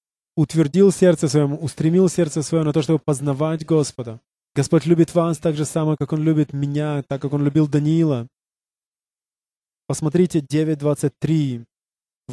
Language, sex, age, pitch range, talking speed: English, male, 20-39, 135-175 Hz, 135 wpm